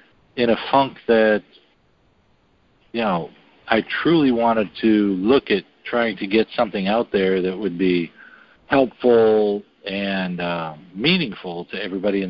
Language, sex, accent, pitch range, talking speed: English, male, American, 100-125 Hz, 135 wpm